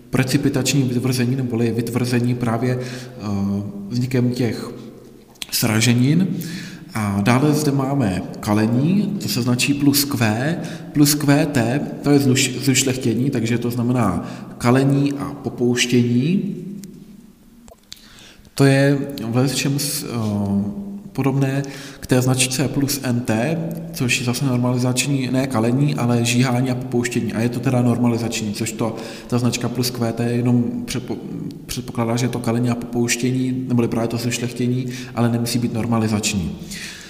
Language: Czech